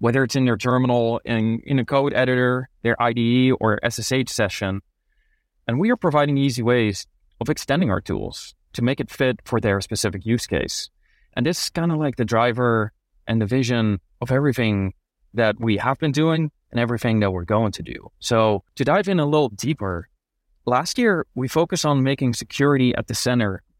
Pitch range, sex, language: 110-140 Hz, male, English